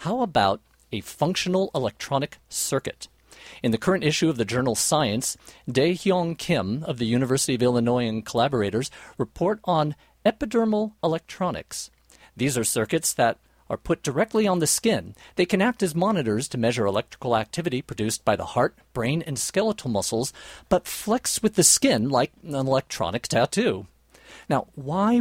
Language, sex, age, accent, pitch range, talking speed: English, male, 50-69, American, 120-175 Hz, 155 wpm